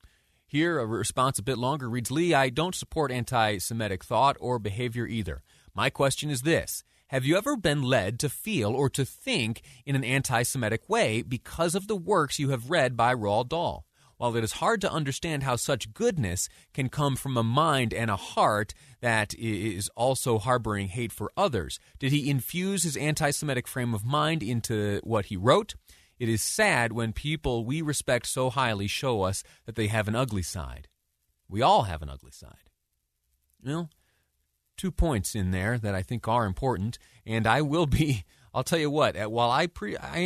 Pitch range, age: 105-140 Hz, 30-49